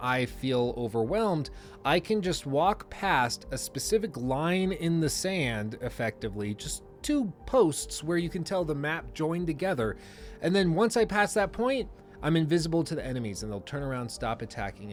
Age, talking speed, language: 30-49, 175 wpm, English